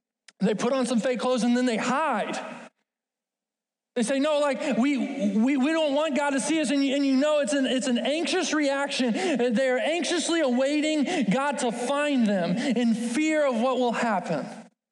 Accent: American